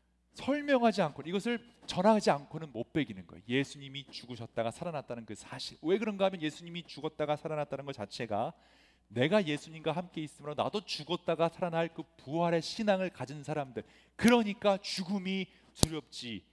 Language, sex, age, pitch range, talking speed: English, male, 40-59, 130-205 Hz, 130 wpm